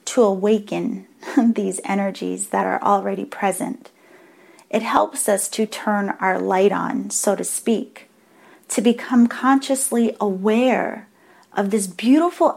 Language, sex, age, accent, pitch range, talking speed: English, female, 30-49, American, 210-270 Hz, 125 wpm